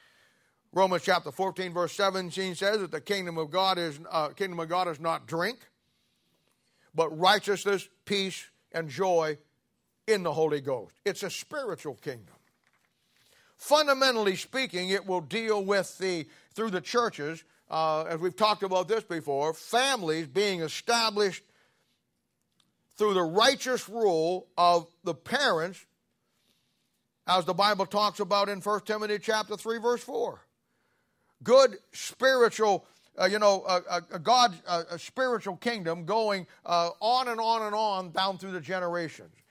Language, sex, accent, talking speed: English, male, American, 140 wpm